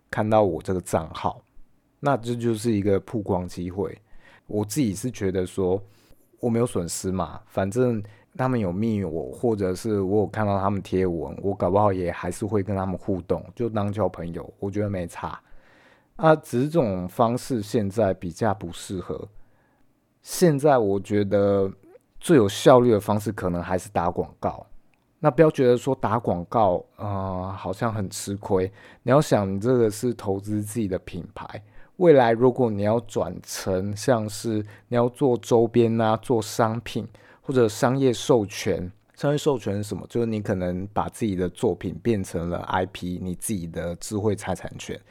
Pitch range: 95-115 Hz